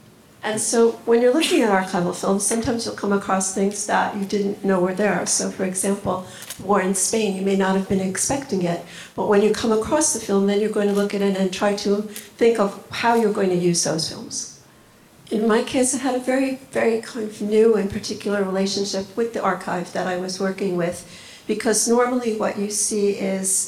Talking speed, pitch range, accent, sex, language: 220 wpm, 190-215 Hz, American, female, English